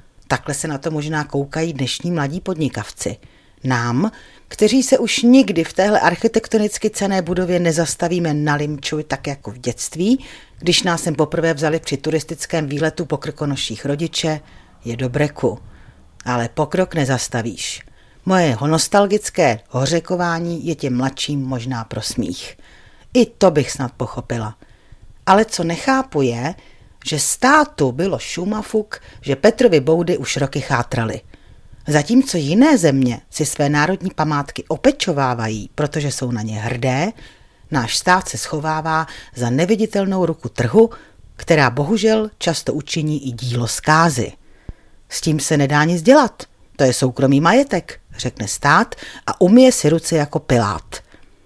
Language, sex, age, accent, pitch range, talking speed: Czech, female, 40-59, native, 130-180 Hz, 135 wpm